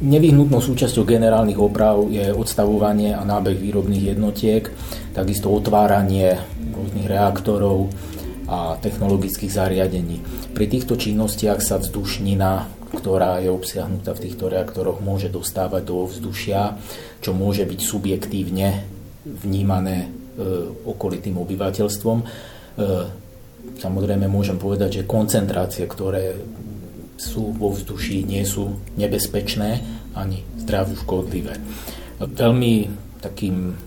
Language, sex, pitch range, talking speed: Slovak, male, 95-105 Hz, 95 wpm